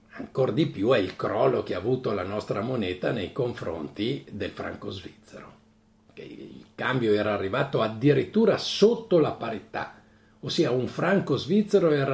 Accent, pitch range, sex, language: native, 110-160 Hz, male, Italian